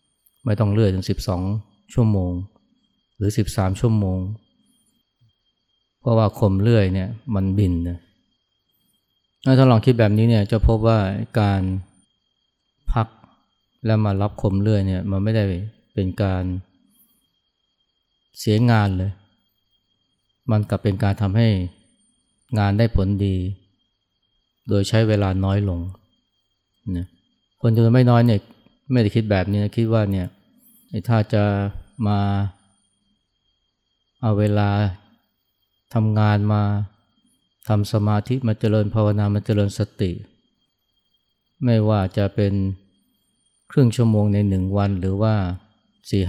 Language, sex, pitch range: Thai, male, 95-110 Hz